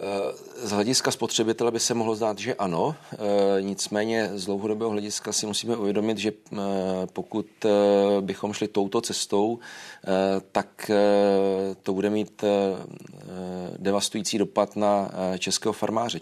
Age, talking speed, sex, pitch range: 40-59, 115 wpm, male, 95-105 Hz